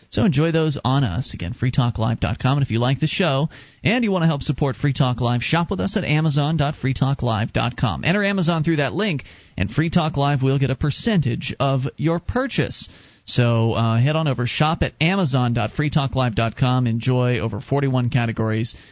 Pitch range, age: 125-160 Hz, 40-59